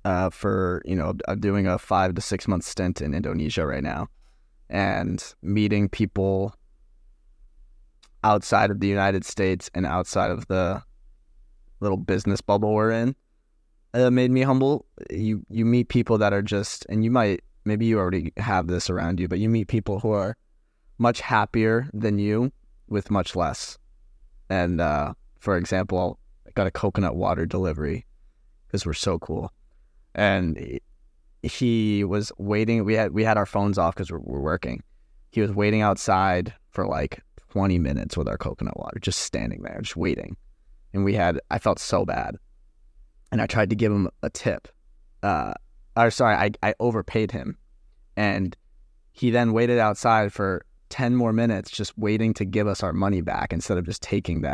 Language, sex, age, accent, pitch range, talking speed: English, male, 20-39, American, 90-110 Hz, 175 wpm